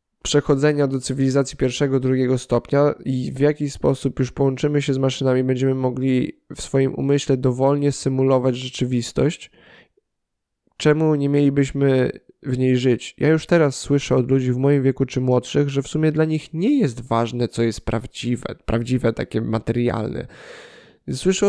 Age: 20-39